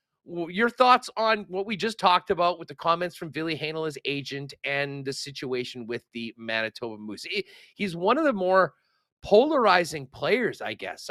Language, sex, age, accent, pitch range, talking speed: English, male, 40-59, American, 135-185 Hz, 165 wpm